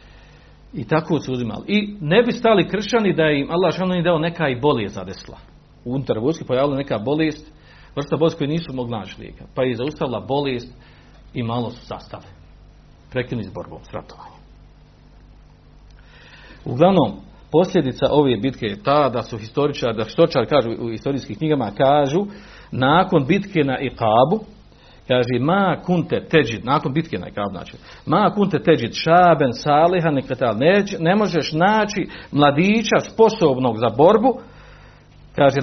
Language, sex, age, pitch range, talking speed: Croatian, male, 50-69, 110-165 Hz, 140 wpm